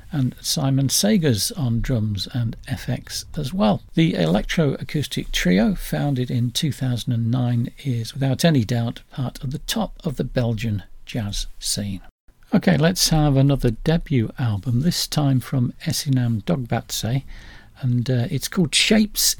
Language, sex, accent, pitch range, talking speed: English, male, British, 120-160 Hz, 135 wpm